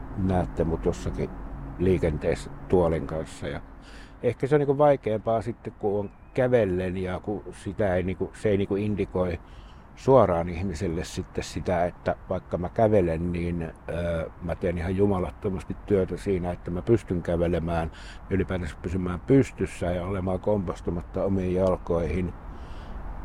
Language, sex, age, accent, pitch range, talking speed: Finnish, male, 60-79, native, 85-95 Hz, 135 wpm